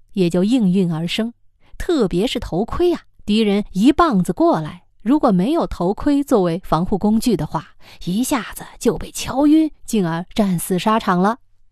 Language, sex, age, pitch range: Chinese, female, 20-39, 170-250 Hz